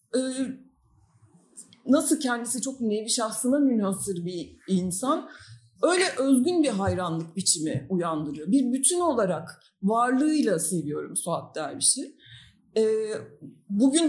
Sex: female